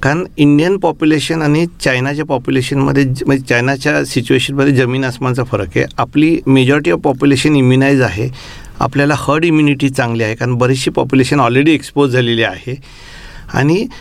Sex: male